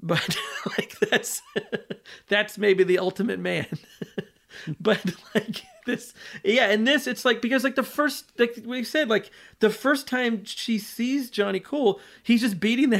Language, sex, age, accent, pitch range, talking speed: English, male, 30-49, American, 165-220 Hz, 160 wpm